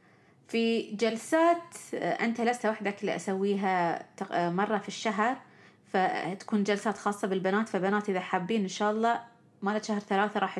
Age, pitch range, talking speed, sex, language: 30-49, 205-265 Hz, 130 wpm, female, Arabic